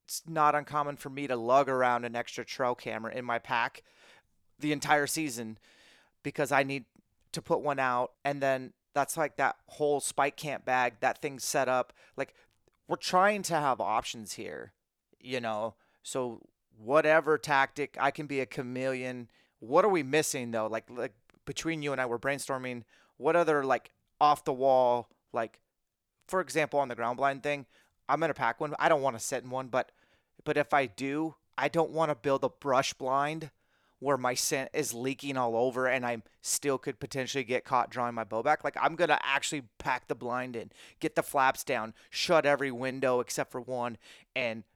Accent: American